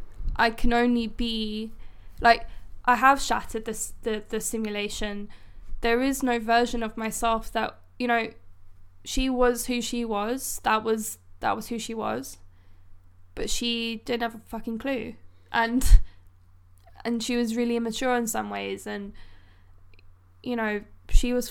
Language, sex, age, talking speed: English, female, 10-29, 150 wpm